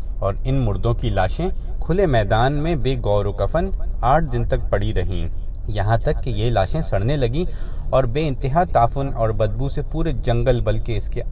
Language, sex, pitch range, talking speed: Urdu, male, 105-130 Hz, 190 wpm